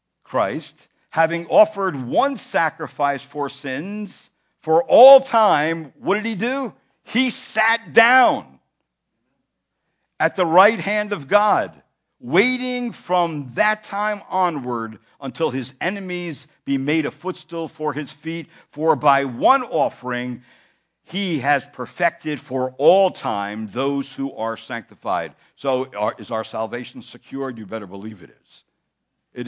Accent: American